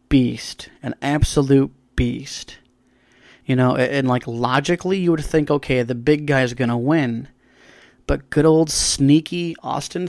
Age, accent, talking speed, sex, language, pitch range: 30-49, American, 150 wpm, male, English, 125-155 Hz